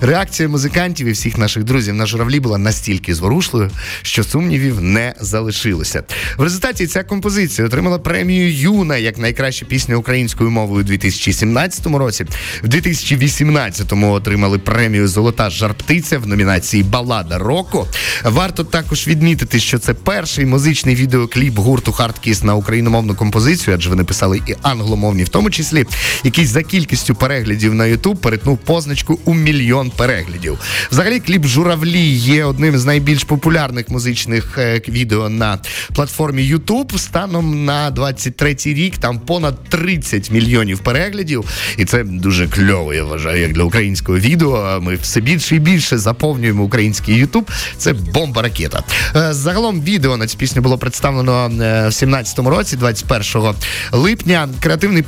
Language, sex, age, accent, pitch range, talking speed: Ukrainian, male, 30-49, native, 110-155 Hz, 140 wpm